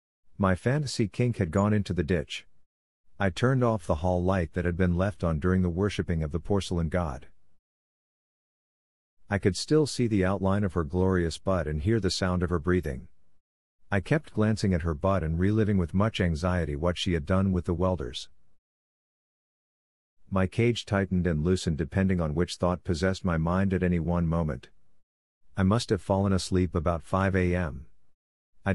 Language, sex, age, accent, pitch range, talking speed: English, male, 50-69, American, 85-100 Hz, 180 wpm